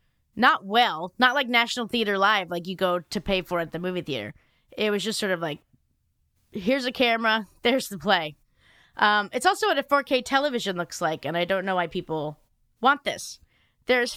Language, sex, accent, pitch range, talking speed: English, female, American, 195-265 Hz, 200 wpm